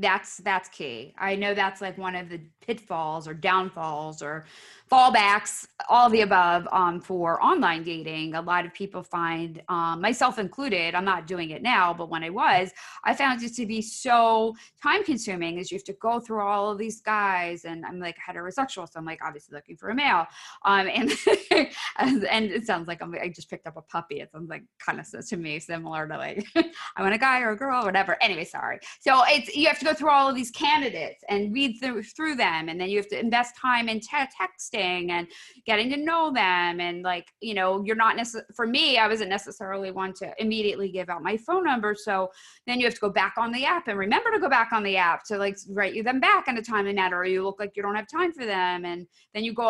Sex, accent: female, American